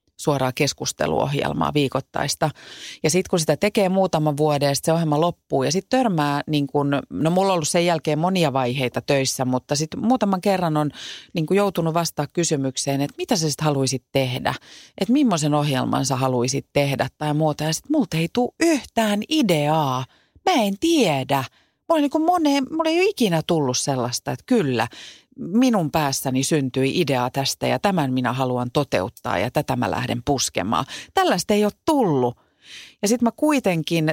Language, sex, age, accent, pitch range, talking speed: Finnish, female, 30-49, native, 130-185 Hz, 175 wpm